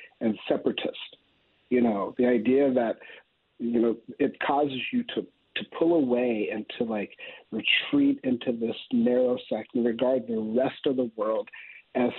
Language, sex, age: English, male, 50-69